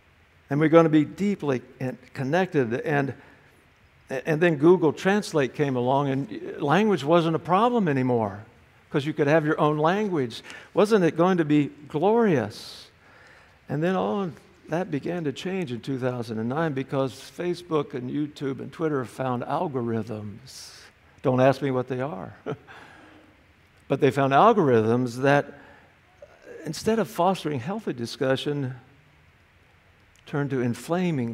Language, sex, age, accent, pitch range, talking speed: English, male, 60-79, American, 115-155 Hz, 135 wpm